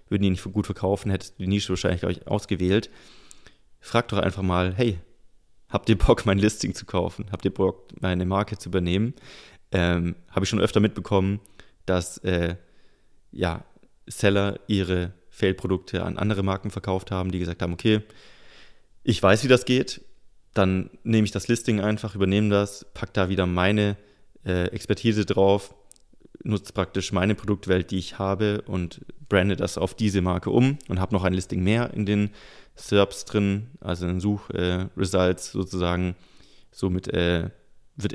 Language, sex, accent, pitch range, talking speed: German, male, German, 90-105 Hz, 165 wpm